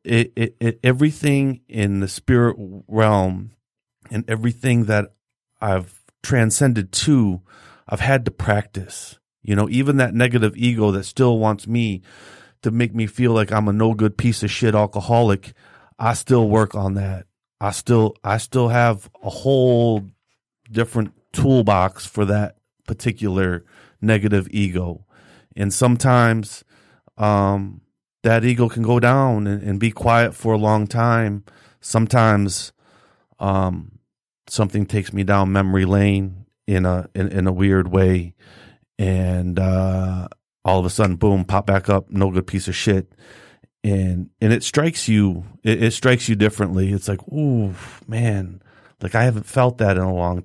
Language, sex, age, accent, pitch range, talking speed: English, male, 30-49, American, 100-115 Hz, 150 wpm